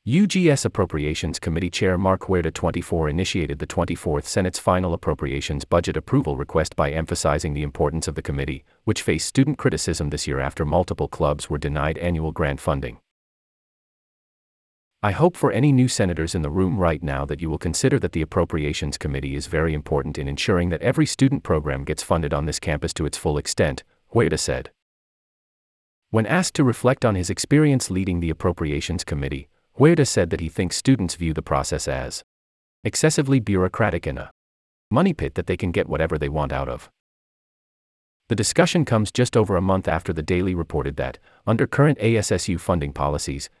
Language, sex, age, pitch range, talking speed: English, male, 30-49, 75-105 Hz, 180 wpm